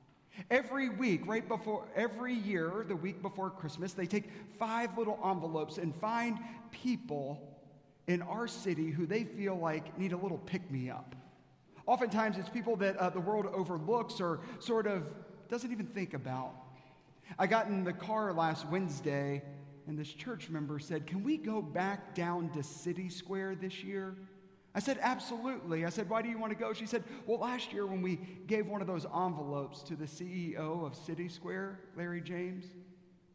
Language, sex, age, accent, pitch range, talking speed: English, male, 40-59, American, 155-205 Hz, 175 wpm